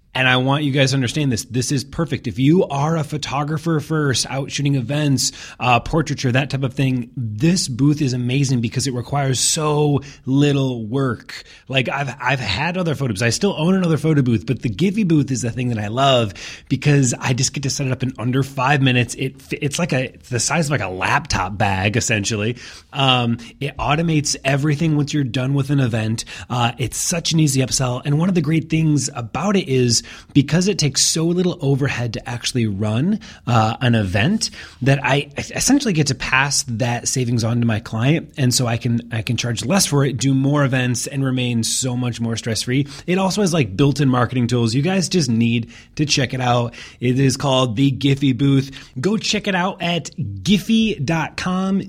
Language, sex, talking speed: English, male, 205 wpm